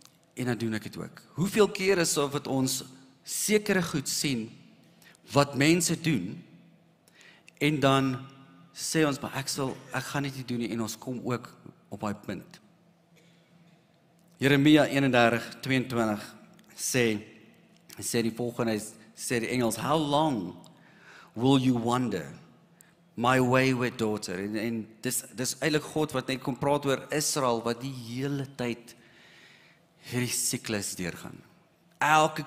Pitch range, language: 120-165 Hz, English